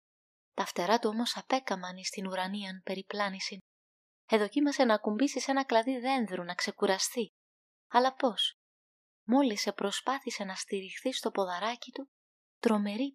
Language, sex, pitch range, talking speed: Greek, female, 195-250 Hz, 125 wpm